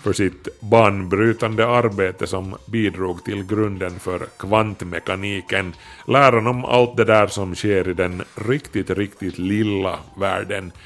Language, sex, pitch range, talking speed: Swedish, male, 95-115 Hz, 125 wpm